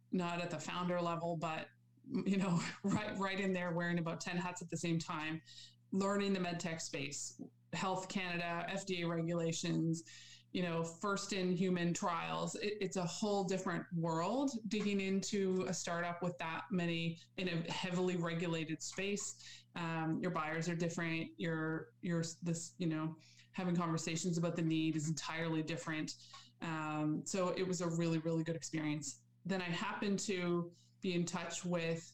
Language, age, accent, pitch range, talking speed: English, 20-39, American, 165-185 Hz, 165 wpm